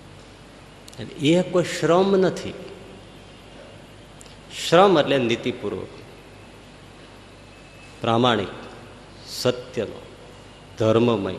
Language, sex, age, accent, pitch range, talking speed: Gujarati, male, 50-69, native, 115-150 Hz, 55 wpm